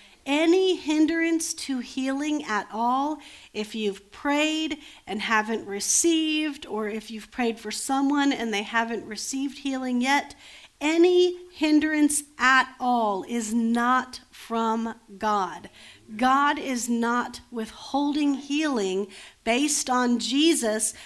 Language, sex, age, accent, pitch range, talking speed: English, female, 50-69, American, 235-305 Hz, 115 wpm